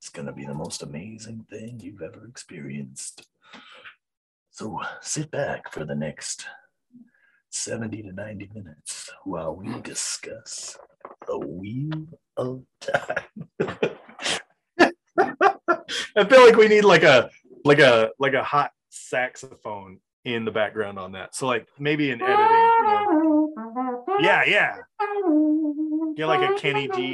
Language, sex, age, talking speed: English, male, 30-49, 125 wpm